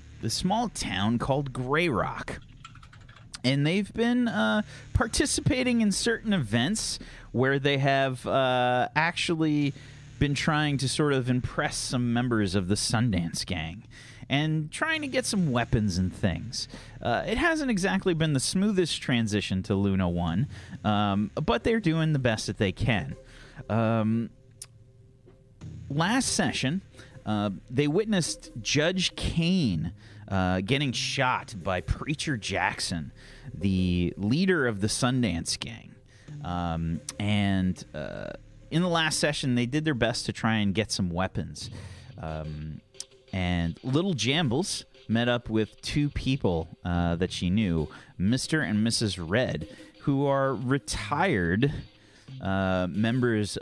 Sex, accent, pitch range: male, American, 105-145 Hz